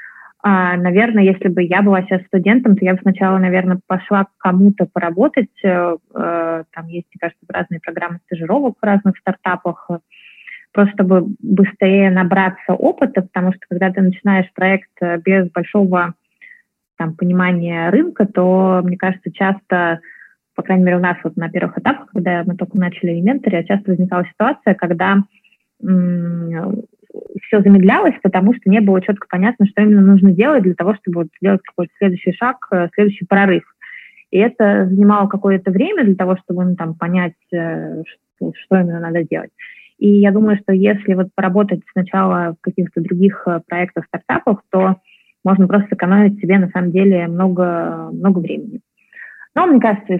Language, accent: Russian, native